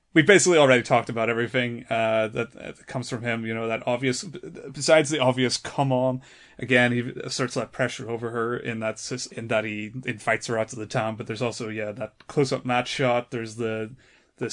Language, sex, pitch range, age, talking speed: English, male, 115-130 Hz, 30-49, 210 wpm